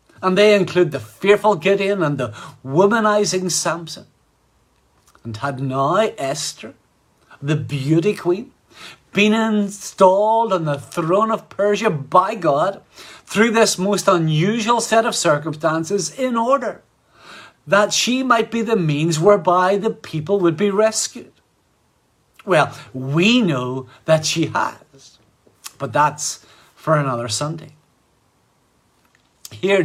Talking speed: 120 wpm